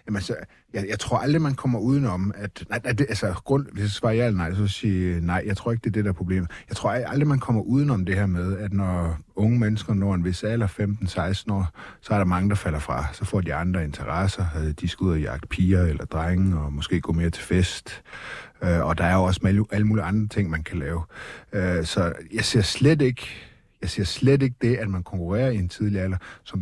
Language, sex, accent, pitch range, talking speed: Danish, male, native, 90-110 Hz, 240 wpm